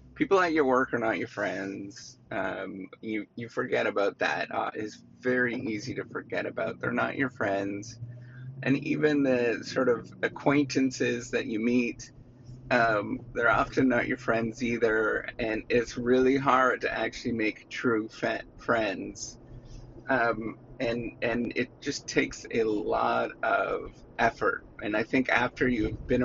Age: 30-49